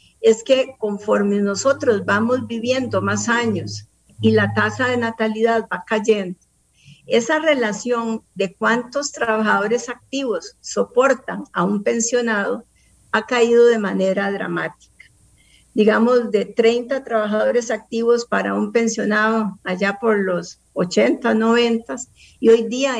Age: 50-69